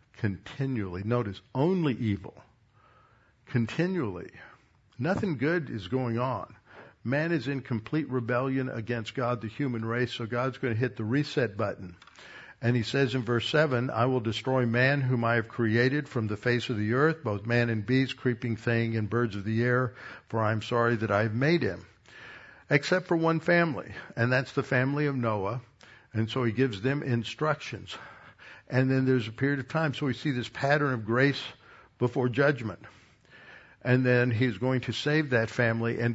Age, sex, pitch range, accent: 60-79, male, 115-140 Hz, American